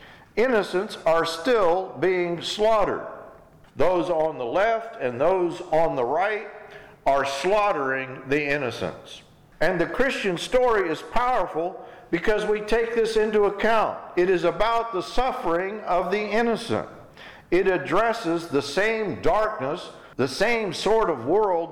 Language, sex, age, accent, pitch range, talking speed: English, male, 50-69, American, 155-215 Hz, 135 wpm